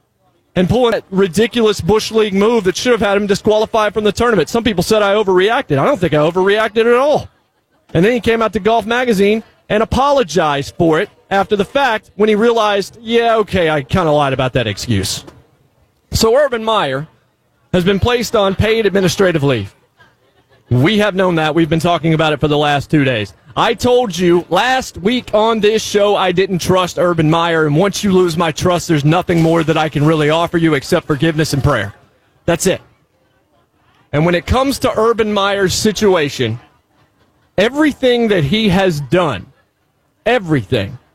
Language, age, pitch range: English, 30-49, 155-220 Hz